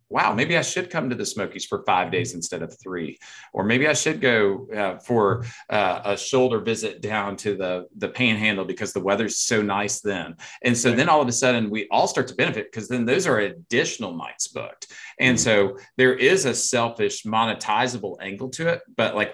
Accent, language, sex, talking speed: American, English, male, 210 wpm